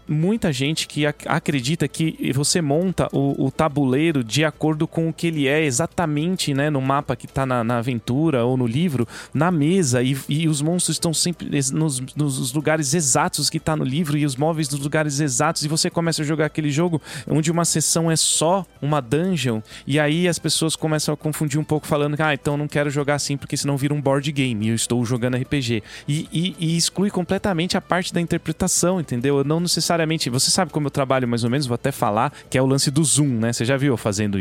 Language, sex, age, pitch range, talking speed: Portuguese, male, 20-39, 130-160 Hz, 225 wpm